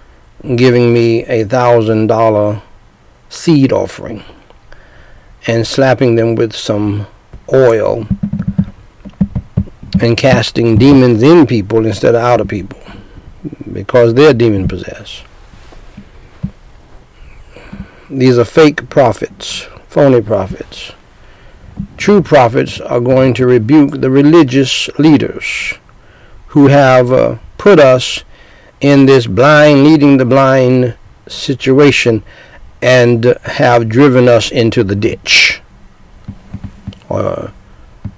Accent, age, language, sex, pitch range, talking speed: American, 60-79, English, male, 115-135 Hz, 95 wpm